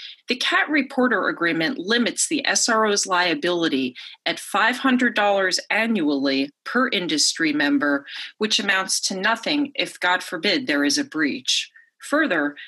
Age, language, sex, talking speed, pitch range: 40-59, English, female, 125 wpm, 175-275 Hz